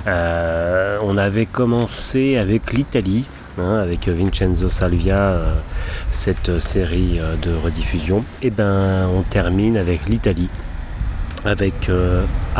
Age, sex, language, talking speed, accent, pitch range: 30-49, male, French, 115 wpm, French, 90-105 Hz